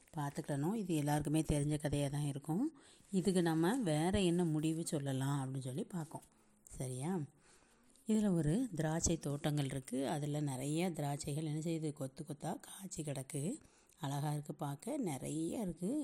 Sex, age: female, 30-49